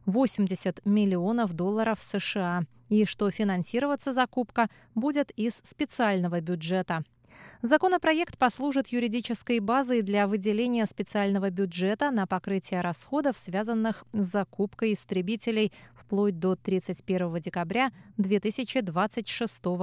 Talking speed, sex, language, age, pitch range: 95 wpm, female, Russian, 20-39, 190-240 Hz